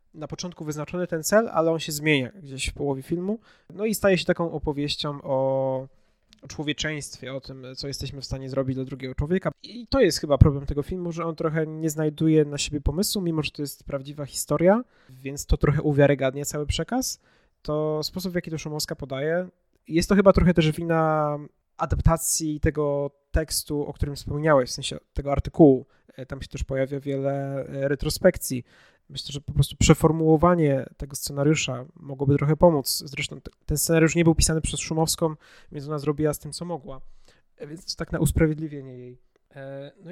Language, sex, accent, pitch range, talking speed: Polish, male, native, 140-165 Hz, 180 wpm